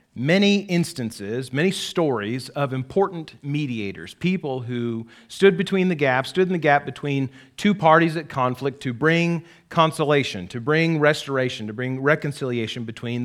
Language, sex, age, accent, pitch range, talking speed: English, male, 40-59, American, 130-170 Hz, 145 wpm